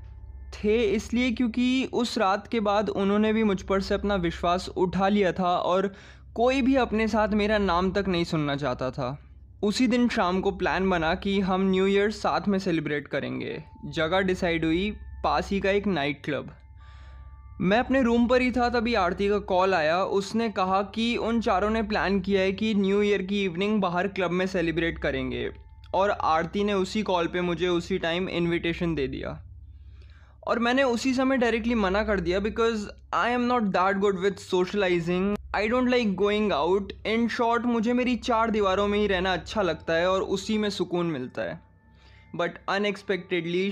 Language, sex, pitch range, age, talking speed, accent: Hindi, male, 170-215 Hz, 20-39, 185 wpm, native